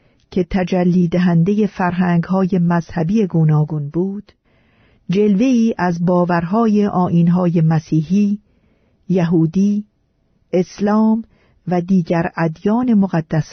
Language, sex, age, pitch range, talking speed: Persian, female, 50-69, 165-210 Hz, 85 wpm